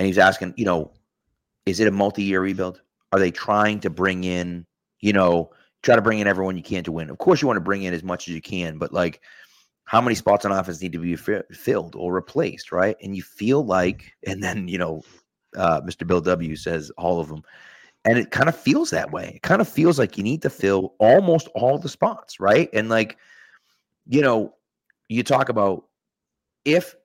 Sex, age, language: male, 30-49, English